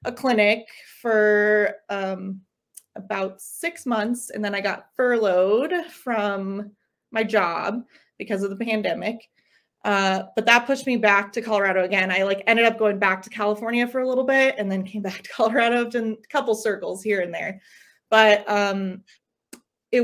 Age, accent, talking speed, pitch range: 20-39, American, 170 wpm, 195-235 Hz